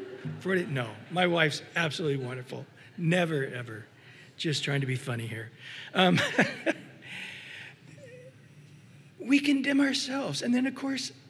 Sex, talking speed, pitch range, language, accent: male, 110 wpm, 150-235 Hz, English, American